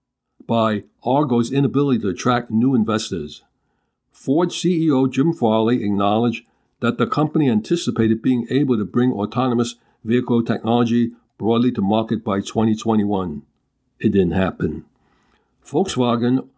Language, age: English, 60-79